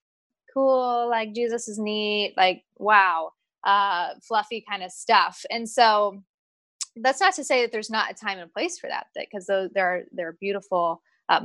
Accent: American